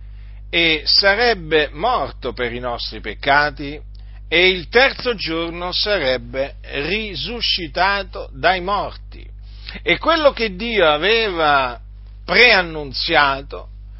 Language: Italian